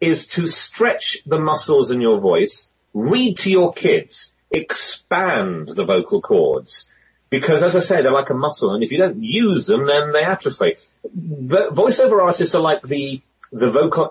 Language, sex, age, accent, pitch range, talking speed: English, male, 30-49, British, 125-205 Hz, 175 wpm